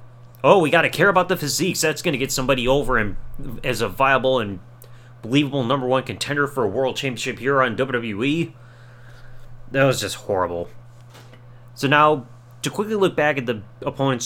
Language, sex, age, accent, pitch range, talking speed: English, male, 30-49, American, 120-150 Hz, 175 wpm